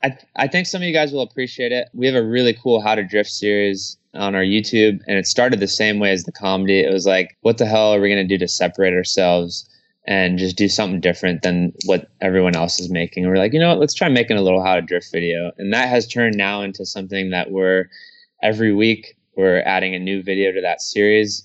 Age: 20-39